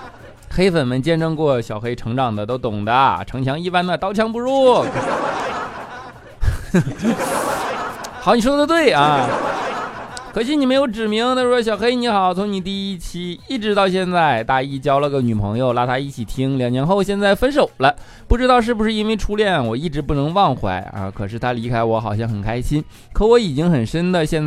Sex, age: male, 20-39